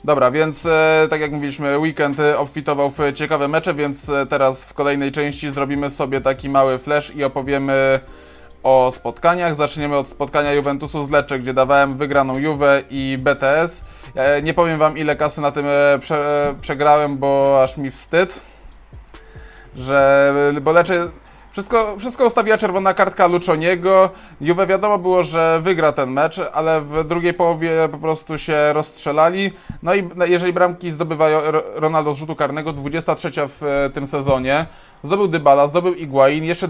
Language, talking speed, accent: Polish, 155 wpm, native